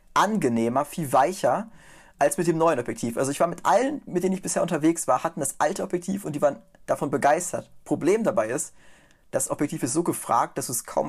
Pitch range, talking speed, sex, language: 130-170 Hz, 215 wpm, male, German